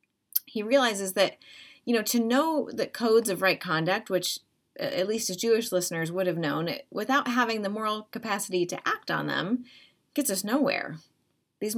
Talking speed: 175 wpm